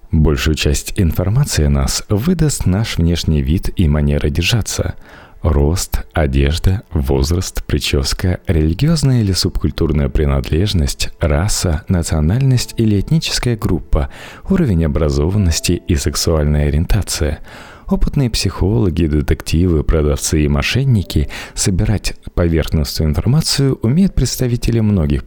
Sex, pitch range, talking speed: male, 75-110 Hz, 100 wpm